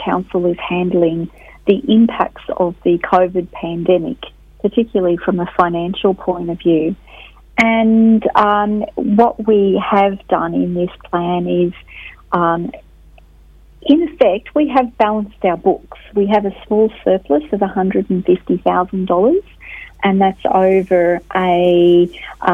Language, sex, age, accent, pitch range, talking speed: English, female, 40-59, Australian, 175-210 Hz, 120 wpm